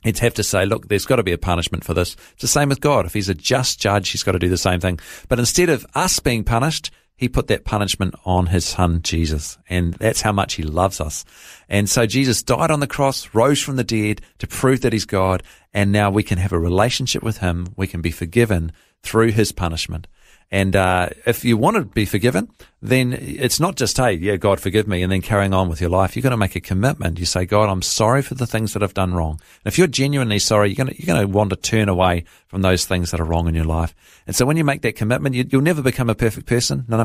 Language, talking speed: English, 265 wpm